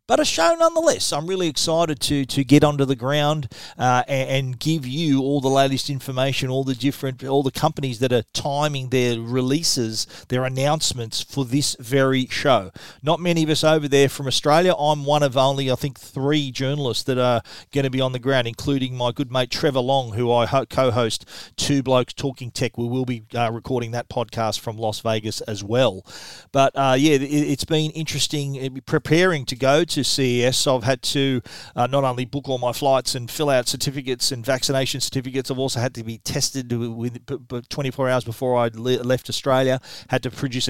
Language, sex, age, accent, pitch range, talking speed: English, male, 40-59, Australian, 125-140 Hz, 205 wpm